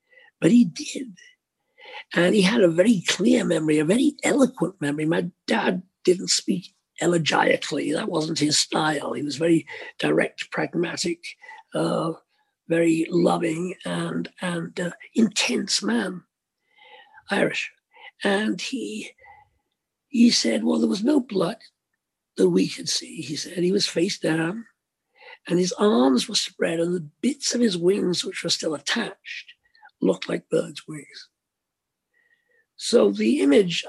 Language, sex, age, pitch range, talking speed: English, male, 50-69, 170-270 Hz, 140 wpm